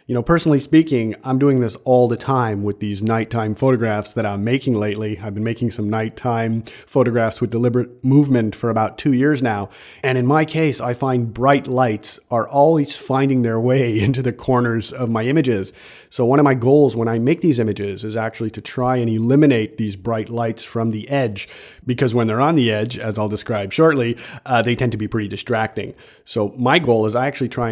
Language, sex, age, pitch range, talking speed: English, male, 40-59, 110-130 Hz, 210 wpm